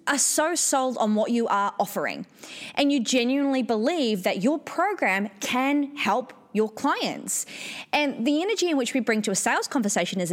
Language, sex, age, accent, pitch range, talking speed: English, female, 20-39, Australian, 190-275 Hz, 180 wpm